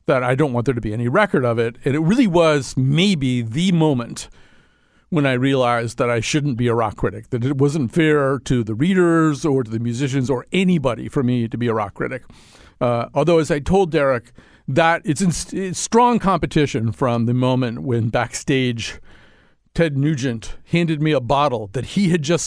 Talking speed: 200 wpm